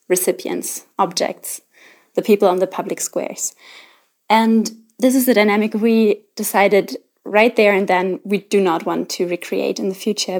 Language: Greek